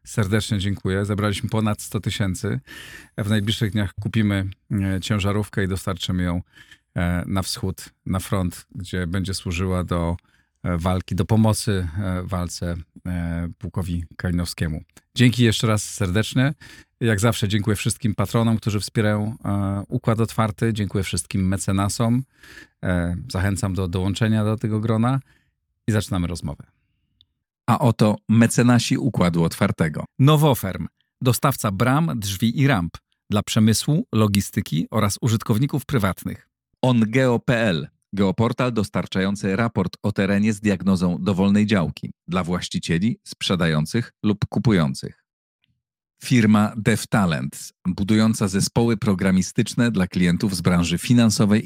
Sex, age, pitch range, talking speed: male, 40-59, 95-115 Hz, 110 wpm